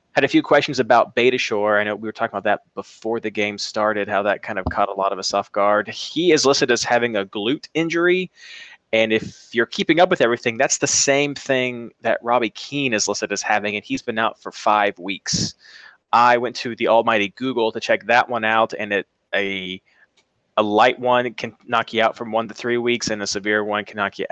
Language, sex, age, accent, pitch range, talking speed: English, male, 20-39, American, 105-125 Hz, 230 wpm